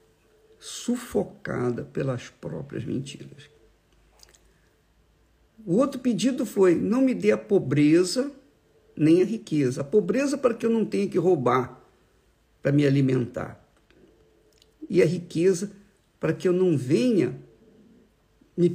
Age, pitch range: 50-69, 125-175 Hz